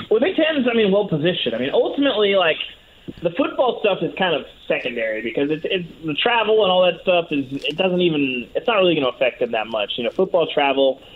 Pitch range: 130-190 Hz